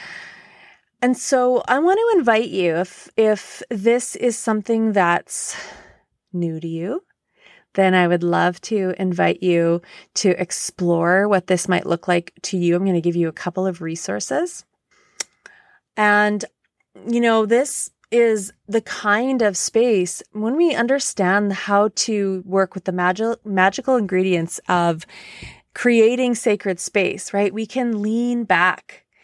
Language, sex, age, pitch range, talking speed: English, female, 30-49, 185-240 Hz, 145 wpm